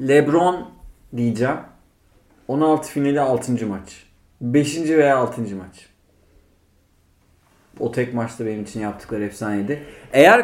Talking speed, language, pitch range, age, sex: 105 wpm, Turkish, 100-140 Hz, 30-49, male